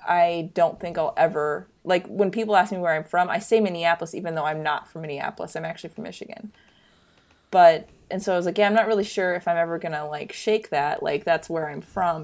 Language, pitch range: English, 160-200 Hz